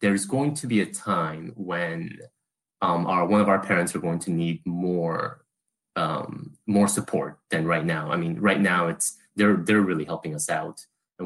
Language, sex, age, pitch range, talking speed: English, male, 30-49, 85-105 Hz, 190 wpm